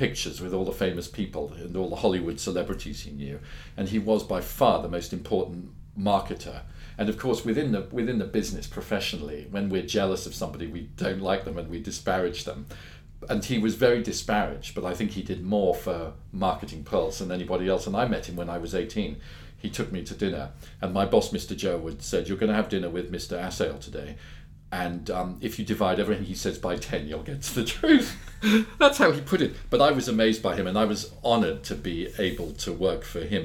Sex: male